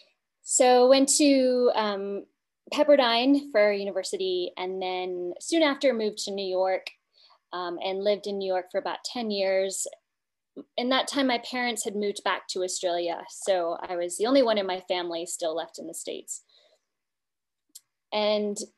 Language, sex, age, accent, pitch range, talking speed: English, female, 20-39, American, 185-245 Hz, 160 wpm